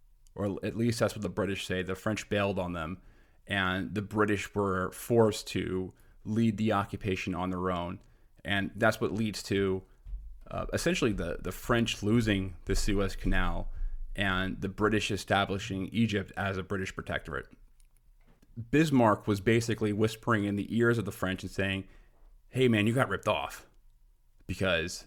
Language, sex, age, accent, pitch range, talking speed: English, male, 30-49, American, 95-110 Hz, 160 wpm